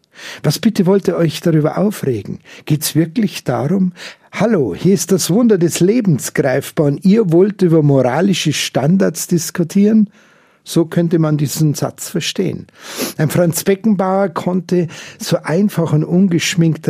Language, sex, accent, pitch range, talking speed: German, male, Austrian, 145-185 Hz, 140 wpm